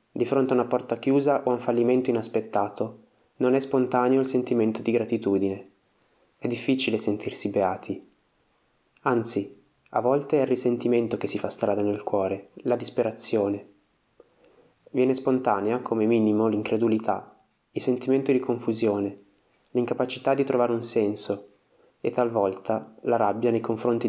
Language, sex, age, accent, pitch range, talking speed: Italian, male, 20-39, native, 110-130 Hz, 140 wpm